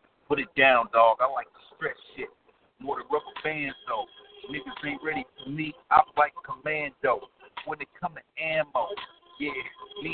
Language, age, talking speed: English, 50-69, 170 wpm